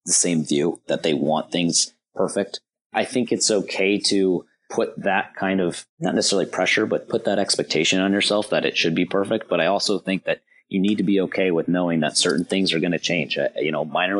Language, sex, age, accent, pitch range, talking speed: English, male, 30-49, American, 80-95 Hz, 225 wpm